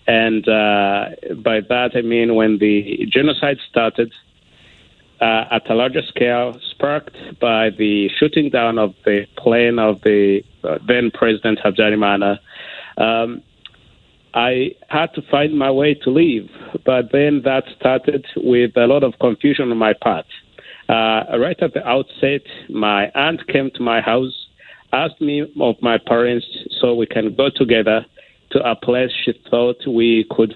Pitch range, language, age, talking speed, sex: 115-145 Hz, English, 50-69, 155 wpm, male